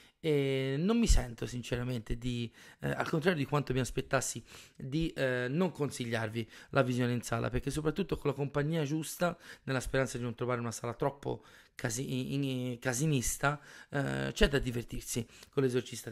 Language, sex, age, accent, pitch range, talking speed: Italian, male, 30-49, native, 120-145 Hz, 165 wpm